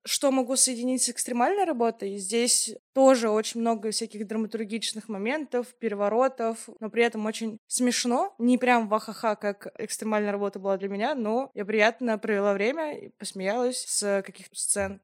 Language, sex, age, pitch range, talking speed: Russian, female, 20-39, 210-250 Hz, 155 wpm